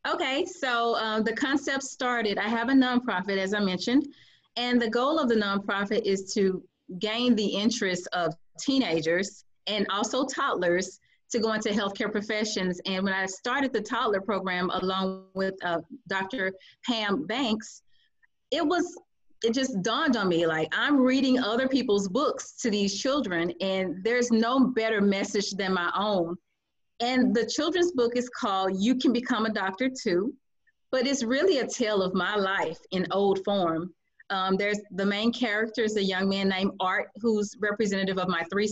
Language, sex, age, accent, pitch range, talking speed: English, female, 30-49, American, 190-245 Hz, 170 wpm